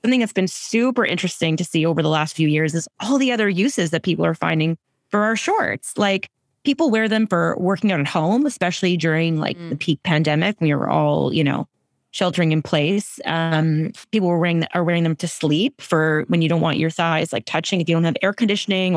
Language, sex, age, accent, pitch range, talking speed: English, female, 20-39, American, 155-190 Hz, 220 wpm